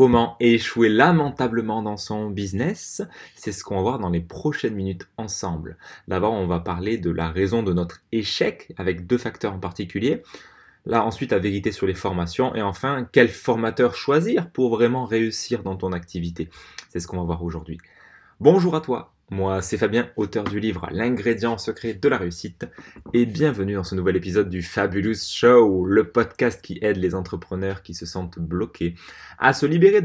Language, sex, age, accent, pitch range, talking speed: French, male, 20-39, French, 90-120 Hz, 185 wpm